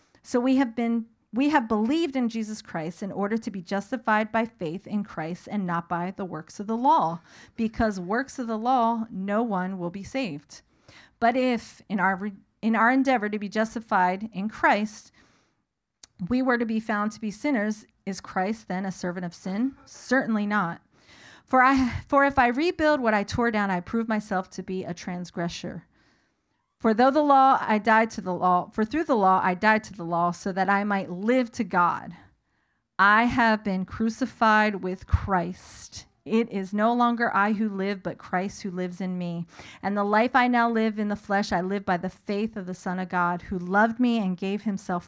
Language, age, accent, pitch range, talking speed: English, 40-59, American, 185-225 Hz, 205 wpm